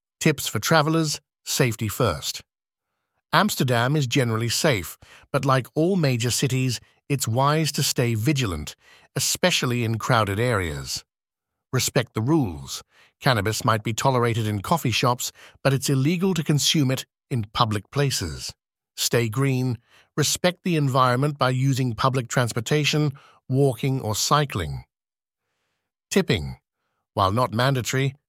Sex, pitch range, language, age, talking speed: male, 115-145 Hz, English, 60-79, 125 wpm